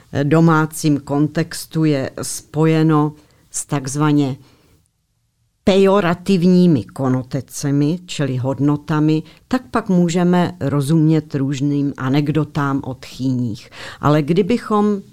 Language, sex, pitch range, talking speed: Czech, female, 130-155 Hz, 80 wpm